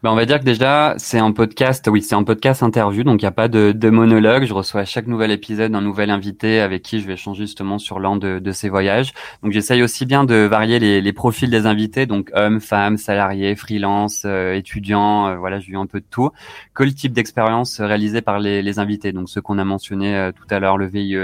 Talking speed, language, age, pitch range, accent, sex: 250 wpm, French, 20-39, 100-110 Hz, French, male